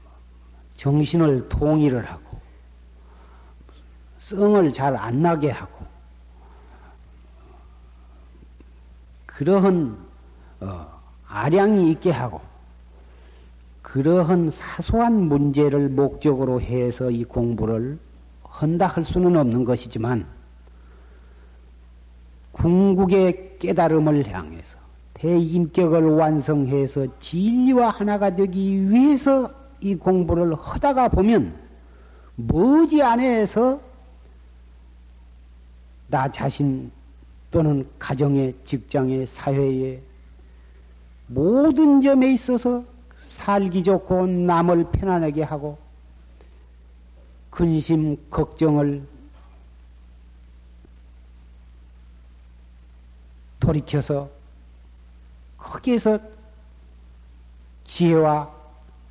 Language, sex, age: Korean, male, 40-59